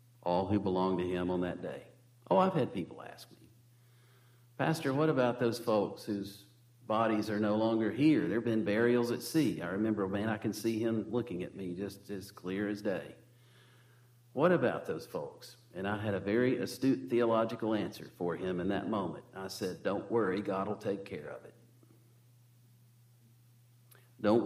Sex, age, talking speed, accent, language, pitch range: male, 50-69, 180 wpm, American, English, 95-120 Hz